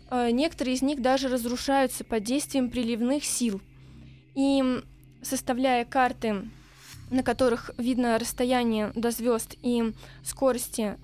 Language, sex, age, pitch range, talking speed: Russian, female, 20-39, 225-265 Hz, 110 wpm